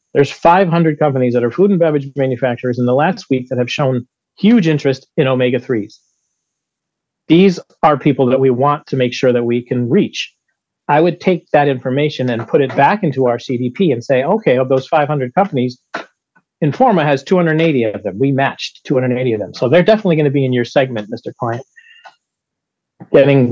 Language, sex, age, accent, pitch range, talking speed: English, male, 40-59, American, 125-160 Hz, 190 wpm